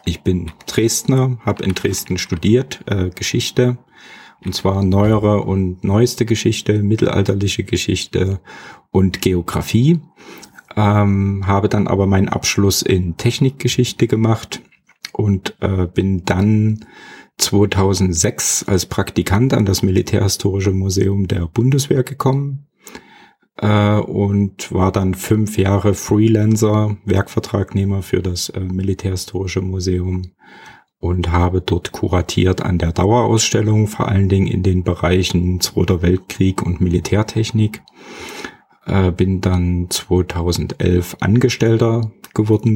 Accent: German